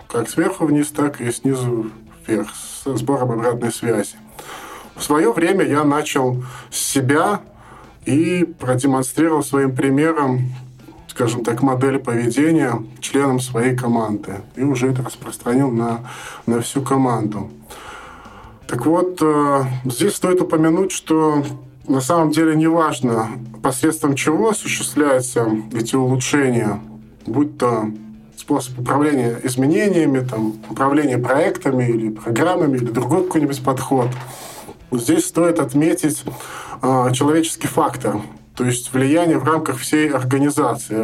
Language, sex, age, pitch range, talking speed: Russian, male, 20-39, 120-150 Hz, 115 wpm